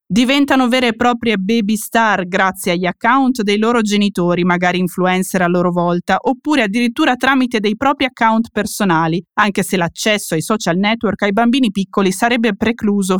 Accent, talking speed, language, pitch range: native, 160 wpm, Italian, 185-230 Hz